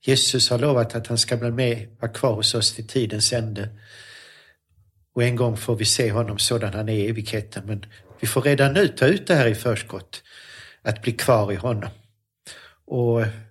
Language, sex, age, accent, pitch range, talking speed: Swedish, male, 50-69, native, 110-135 Hz, 195 wpm